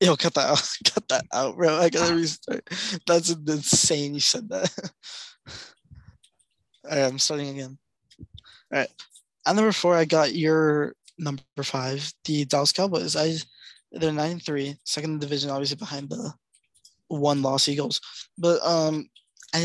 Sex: male